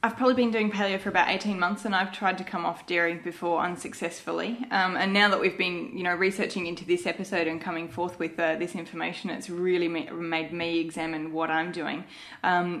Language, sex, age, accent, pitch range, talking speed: English, female, 20-39, Australian, 175-210 Hz, 215 wpm